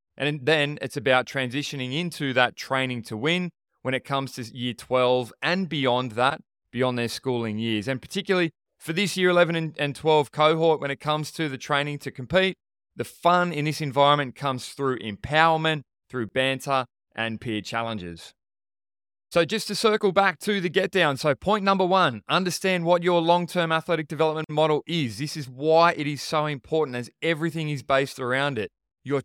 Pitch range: 130-170 Hz